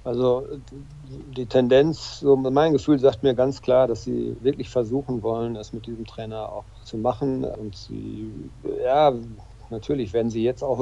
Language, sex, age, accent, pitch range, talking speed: German, male, 50-69, German, 110-125 Hz, 165 wpm